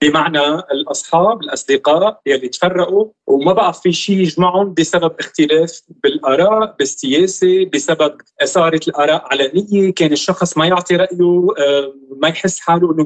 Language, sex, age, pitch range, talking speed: Arabic, male, 30-49, 150-195 Hz, 130 wpm